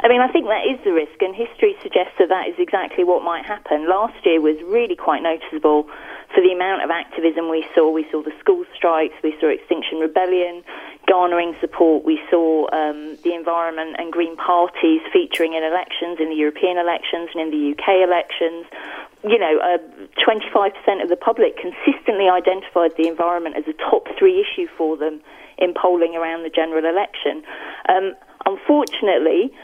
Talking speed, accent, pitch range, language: 180 wpm, British, 160-215 Hz, English